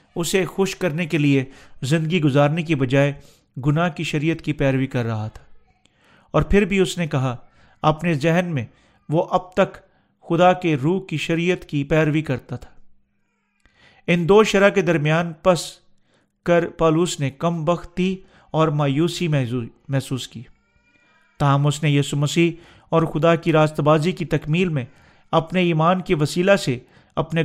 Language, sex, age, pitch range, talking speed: Urdu, male, 40-59, 140-175 Hz, 155 wpm